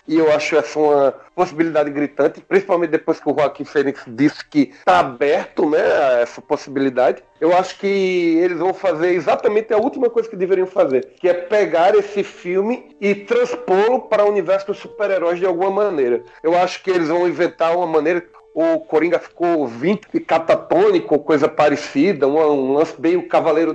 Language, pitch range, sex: Portuguese, 165-210 Hz, male